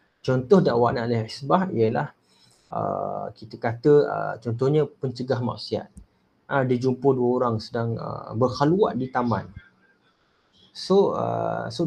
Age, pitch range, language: 20-39, 115-150 Hz, Malay